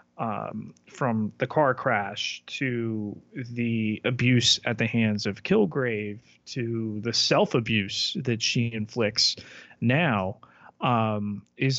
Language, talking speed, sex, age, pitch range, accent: English, 110 wpm, male, 30-49, 110-125 Hz, American